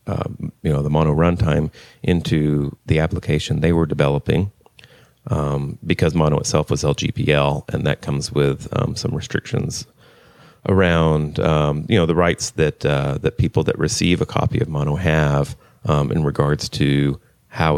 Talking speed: 160 wpm